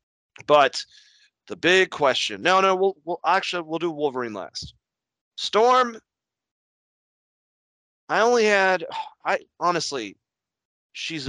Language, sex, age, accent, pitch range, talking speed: English, male, 30-49, American, 105-145 Hz, 105 wpm